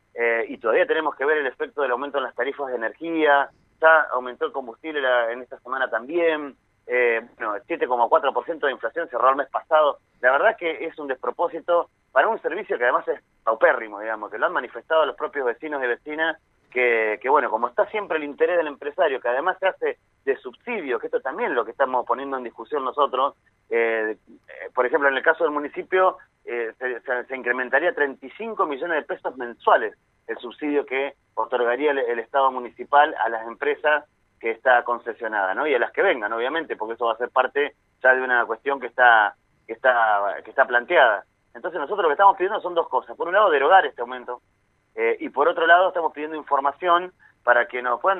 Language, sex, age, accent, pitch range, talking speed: Spanish, male, 30-49, Argentinian, 130-190 Hz, 205 wpm